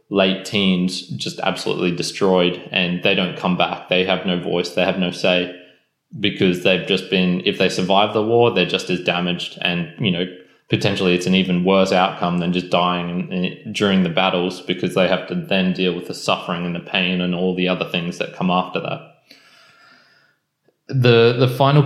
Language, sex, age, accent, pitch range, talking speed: English, male, 20-39, Australian, 90-105 Hz, 190 wpm